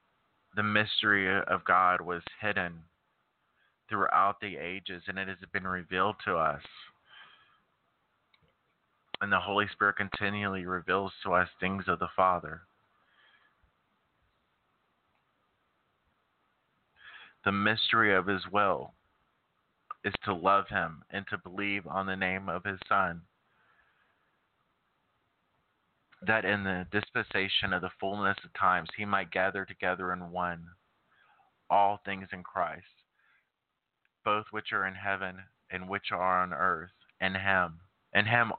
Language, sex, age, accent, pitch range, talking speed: English, male, 30-49, American, 90-100 Hz, 125 wpm